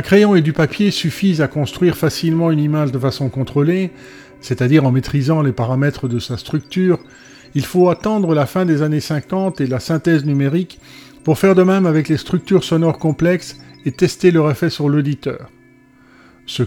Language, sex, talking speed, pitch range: French, male, 175 wpm, 130-165 Hz